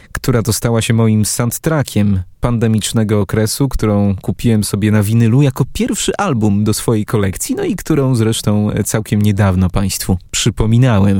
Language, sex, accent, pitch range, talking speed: Polish, male, native, 105-135 Hz, 140 wpm